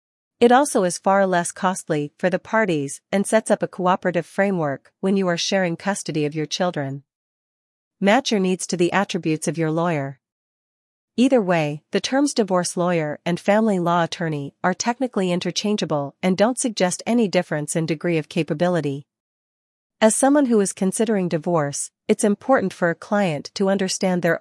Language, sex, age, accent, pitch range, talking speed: English, female, 40-59, American, 160-200 Hz, 165 wpm